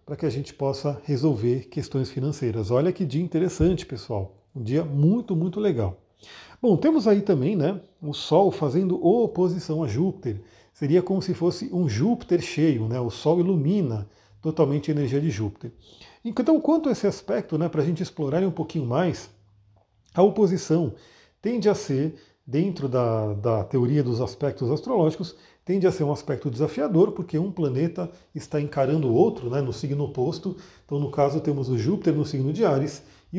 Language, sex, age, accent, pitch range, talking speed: Portuguese, male, 40-59, Brazilian, 135-175 Hz, 175 wpm